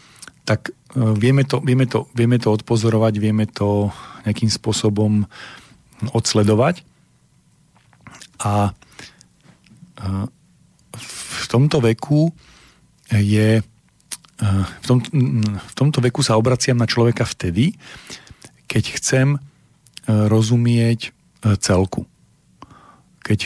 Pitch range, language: 105-120 Hz, Slovak